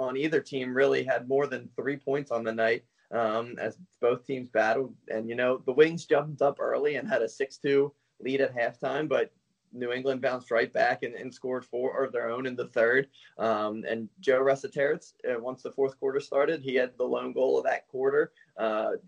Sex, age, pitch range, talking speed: male, 20-39, 120-140 Hz, 210 wpm